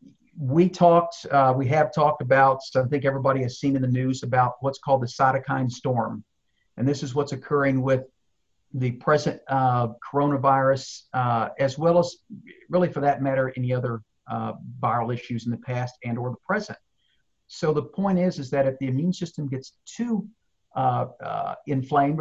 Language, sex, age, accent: English, male, 50-69, American